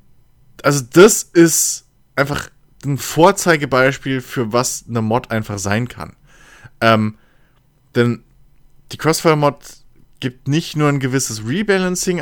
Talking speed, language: 115 wpm, German